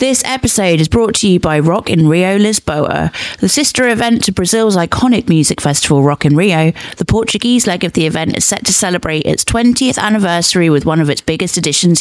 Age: 30-49